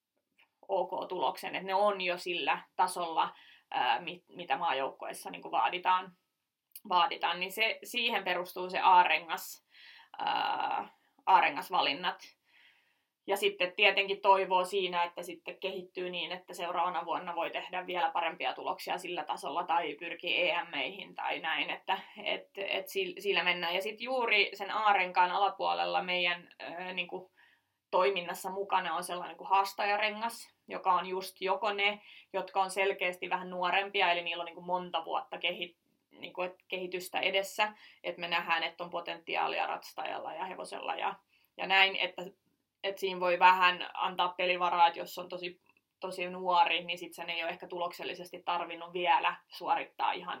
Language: Finnish